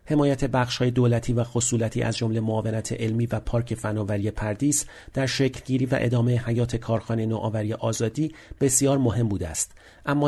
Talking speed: 160 wpm